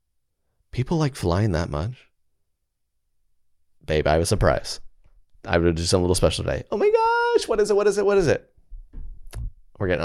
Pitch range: 80-115 Hz